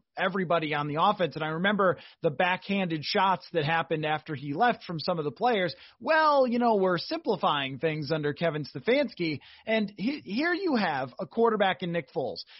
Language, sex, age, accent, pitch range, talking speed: English, male, 30-49, American, 165-225 Hz, 180 wpm